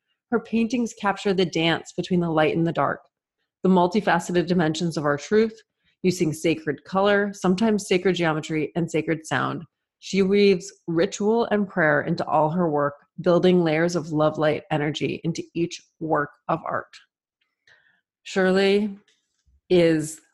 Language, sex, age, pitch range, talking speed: English, female, 30-49, 165-195 Hz, 140 wpm